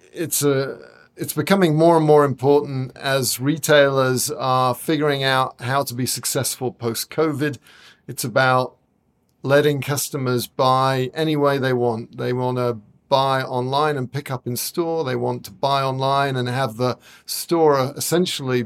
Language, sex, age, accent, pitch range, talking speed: English, male, 50-69, British, 125-145 Hz, 155 wpm